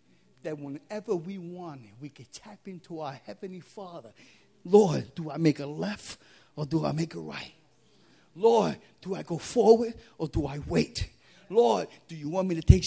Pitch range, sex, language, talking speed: 170-245 Hz, male, English, 185 wpm